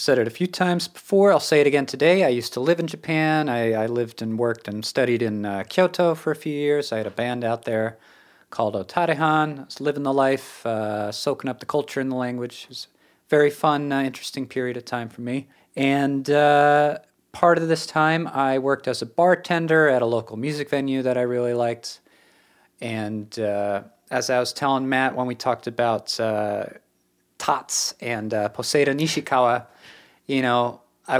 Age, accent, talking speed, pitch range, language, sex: 40-59, American, 200 wpm, 110-145 Hz, English, male